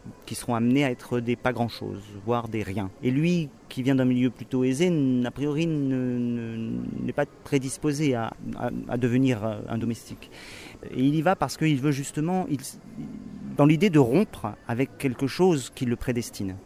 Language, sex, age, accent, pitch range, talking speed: French, male, 40-59, French, 115-145 Hz, 185 wpm